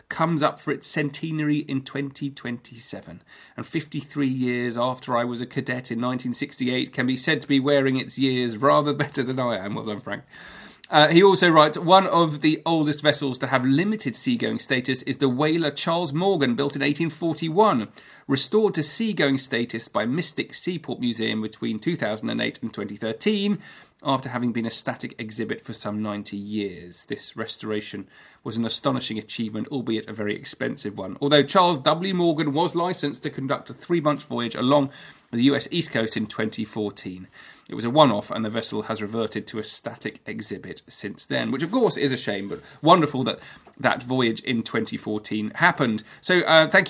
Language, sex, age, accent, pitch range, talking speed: English, male, 30-49, British, 115-150 Hz, 175 wpm